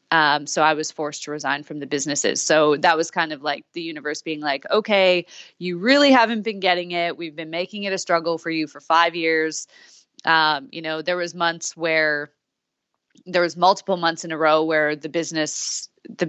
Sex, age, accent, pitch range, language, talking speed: female, 20-39, American, 150-170 Hz, English, 205 wpm